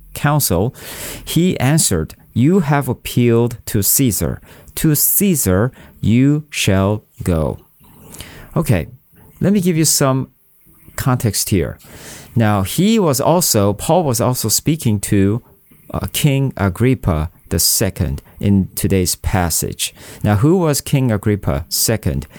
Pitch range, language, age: 95-135 Hz, English, 40-59